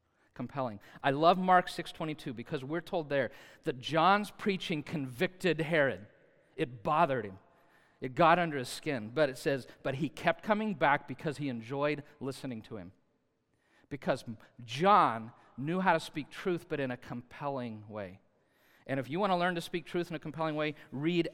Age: 40-59